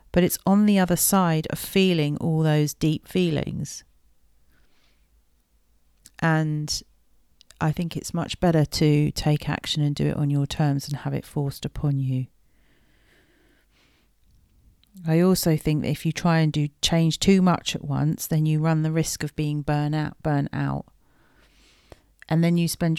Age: 40-59